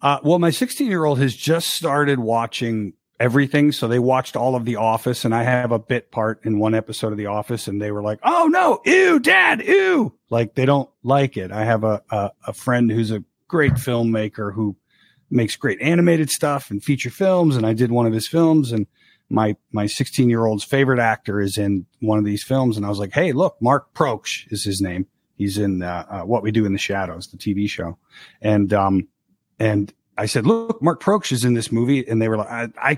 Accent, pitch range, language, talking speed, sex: American, 105-140 Hz, English, 225 wpm, male